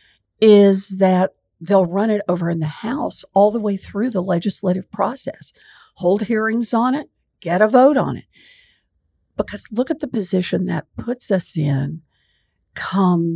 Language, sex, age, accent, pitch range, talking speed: English, female, 60-79, American, 160-215 Hz, 155 wpm